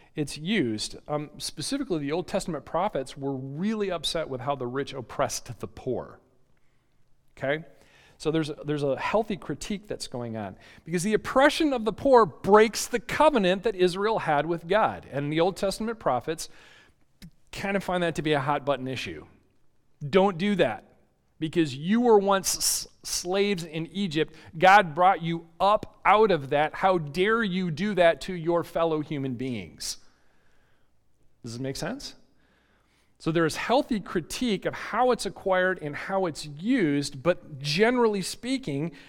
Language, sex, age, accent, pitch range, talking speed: English, male, 40-59, American, 140-200 Hz, 160 wpm